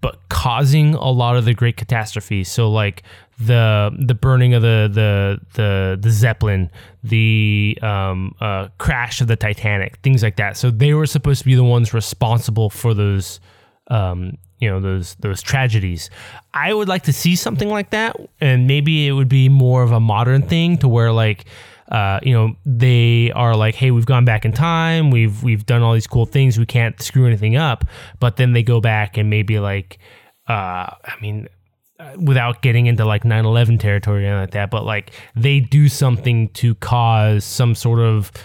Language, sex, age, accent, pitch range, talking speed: English, male, 20-39, American, 105-125 Hz, 190 wpm